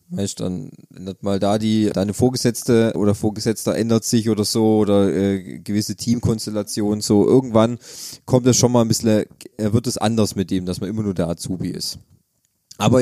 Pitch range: 100-120 Hz